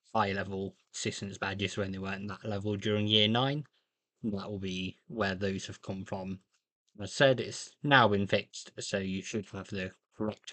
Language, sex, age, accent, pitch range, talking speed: English, male, 20-39, British, 100-110 Hz, 195 wpm